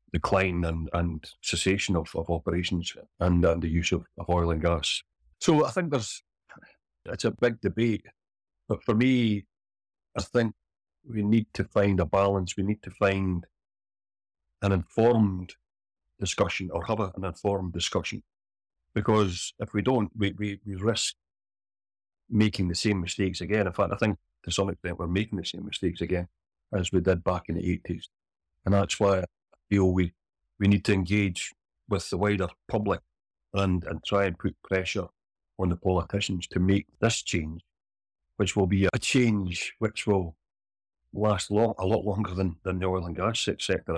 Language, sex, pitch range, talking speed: English, male, 85-105 Hz, 165 wpm